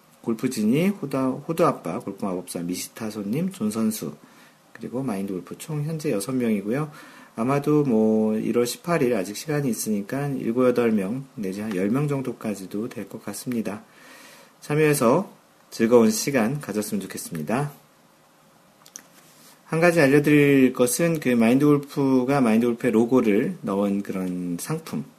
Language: Korean